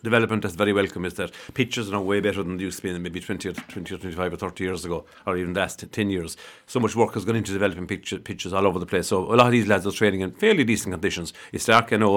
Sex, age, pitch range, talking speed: male, 50-69, 95-115 Hz, 305 wpm